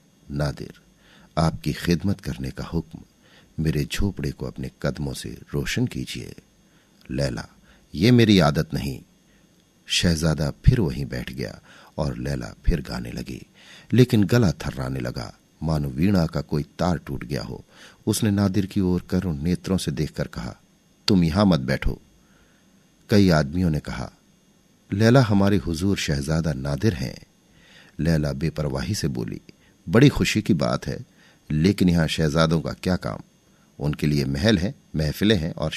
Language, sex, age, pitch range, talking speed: Hindi, male, 50-69, 75-100 Hz, 145 wpm